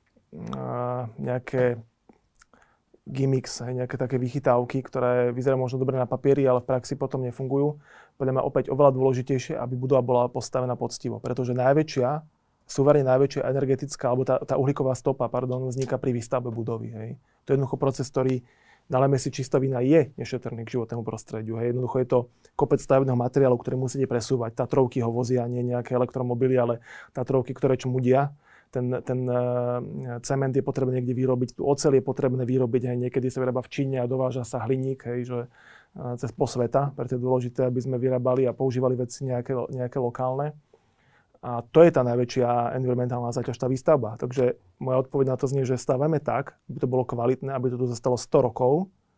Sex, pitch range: male, 125-135 Hz